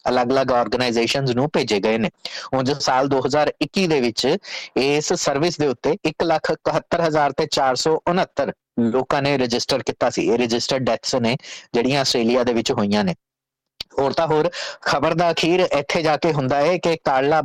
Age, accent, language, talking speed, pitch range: 30-49, Indian, English, 140 wpm, 130-165 Hz